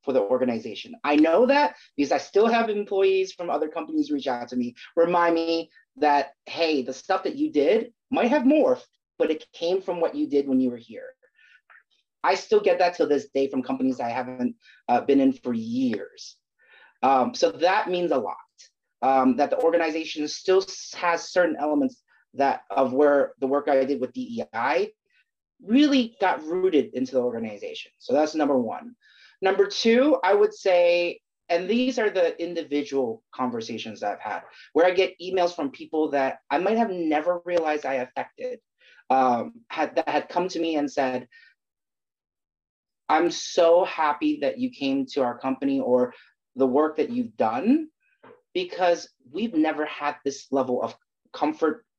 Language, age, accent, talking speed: English, 30-49, American, 170 wpm